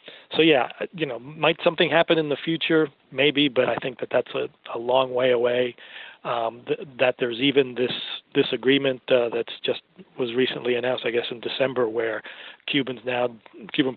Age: 40-59